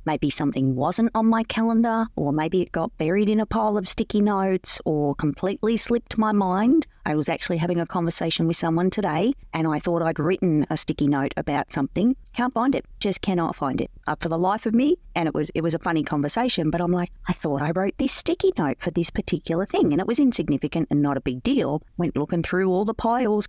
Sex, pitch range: female, 150-210 Hz